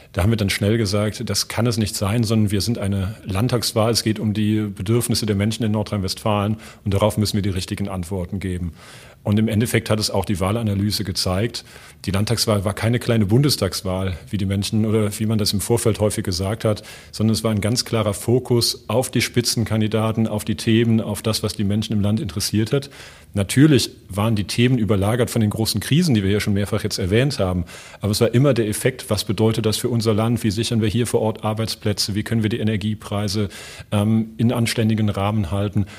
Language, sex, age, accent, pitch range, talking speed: German, male, 40-59, German, 105-115 Hz, 215 wpm